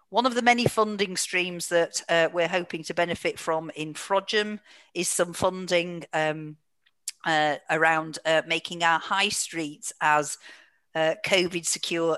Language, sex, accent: English, female, British